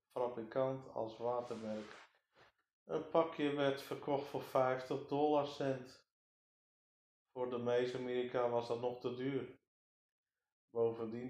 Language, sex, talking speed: Dutch, male, 105 wpm